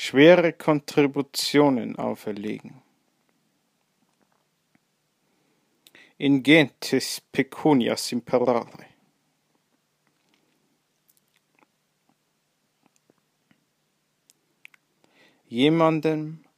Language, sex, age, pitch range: English, male, 50-69, 125-150 Hz